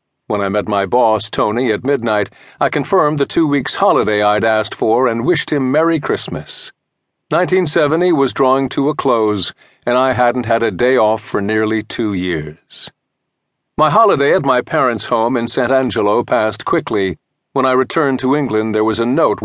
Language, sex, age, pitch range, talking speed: English, male, 50-69, 110-140 Hz, 180 wpm